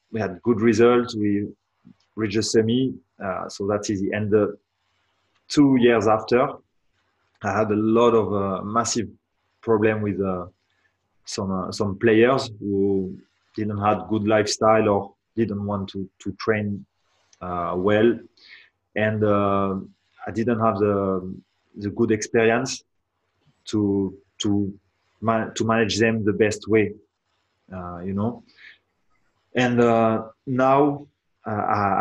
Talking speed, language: 130 wpm, English